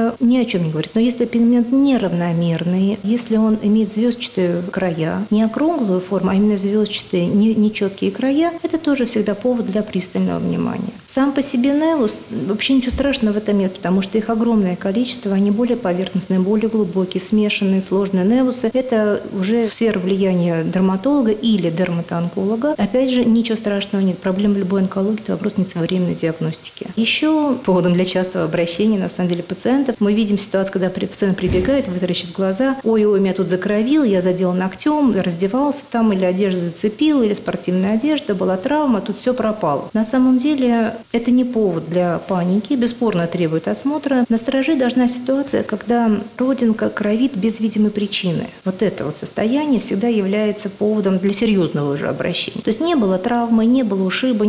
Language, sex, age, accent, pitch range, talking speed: Russian, female, 40-59, native, 185-240 Hz, 165 wpm